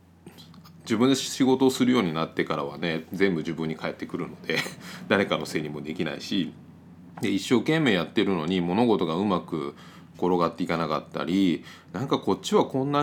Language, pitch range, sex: Japanese, 80-100 Hz, male